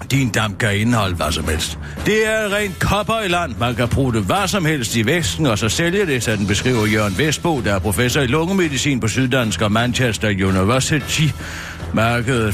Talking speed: 200 wpm